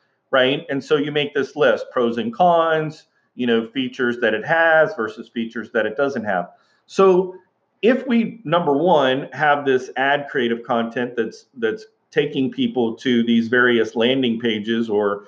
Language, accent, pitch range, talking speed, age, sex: English, American, 125-165 Hz, 165 wpm, 40-59, male